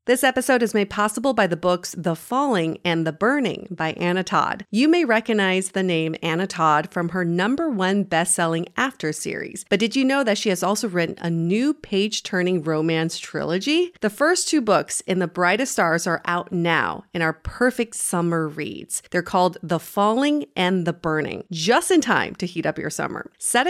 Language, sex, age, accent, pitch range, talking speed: English, female, 40-59, American, 165-225 Hz, 195 wpm